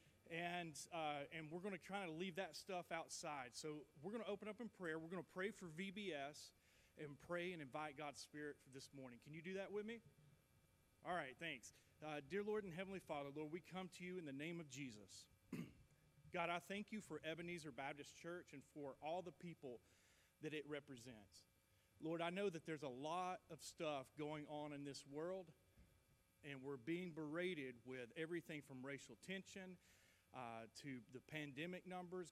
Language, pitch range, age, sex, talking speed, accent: English, 135-180 Hz, 40-59, male, 190 wpm, American